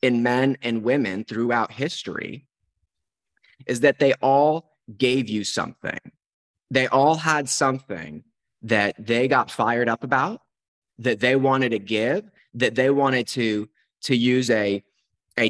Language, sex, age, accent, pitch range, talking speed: English, male, 20-39, American, 110-135 Hz, 140 wpm